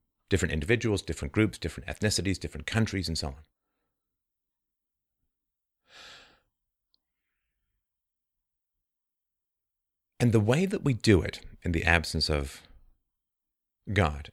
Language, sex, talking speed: English, male, 95 wpm